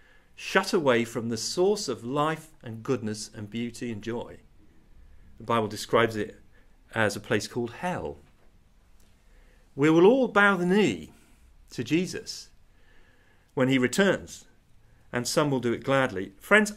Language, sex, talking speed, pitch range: English, male, 145 wpm, 100-145 Hz